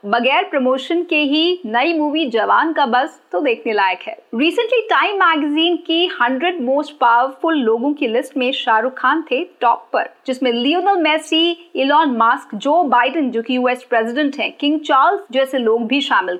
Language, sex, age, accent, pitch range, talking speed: Hindi, female, 50-69, native, 255-345 Hz, 170 wpm